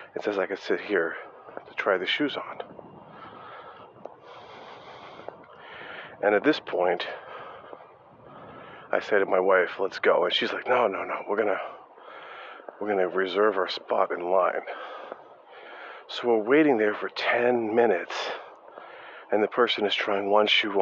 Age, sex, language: 40-59, male, English